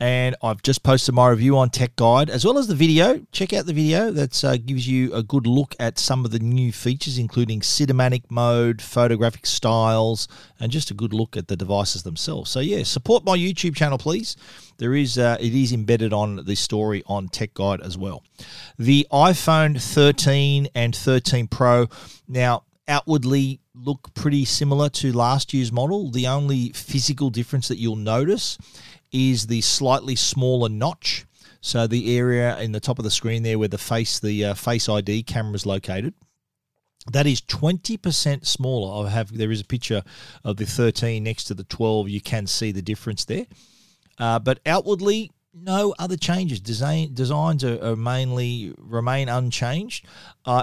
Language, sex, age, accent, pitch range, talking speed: English, male, 40-59, Australian, 115-140 Hz, 180 wpm